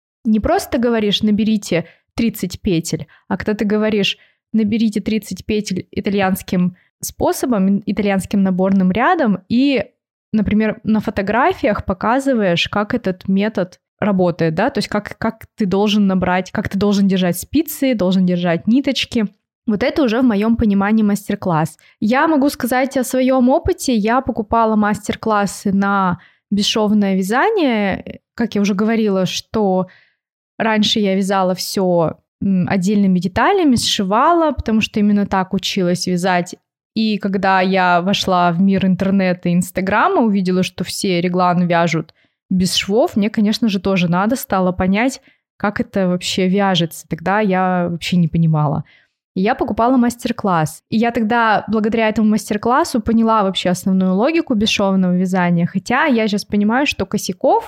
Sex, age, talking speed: female, 20-39, 140 wpm